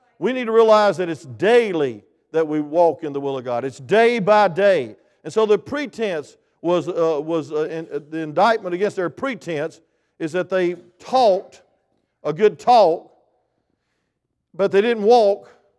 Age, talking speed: 50-69, 170 wpm